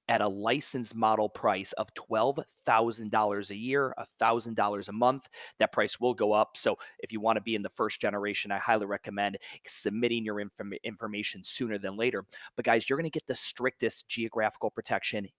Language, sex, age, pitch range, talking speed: English, male, 30-49, 110-130 Hz, 170 wpm